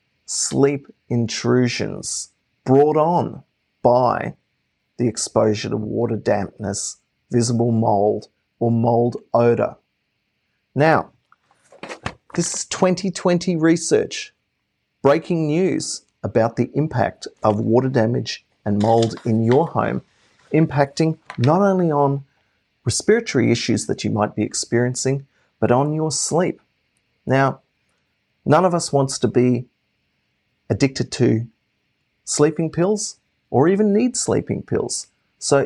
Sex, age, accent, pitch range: male, 40-59, Australian, 115-155 Hz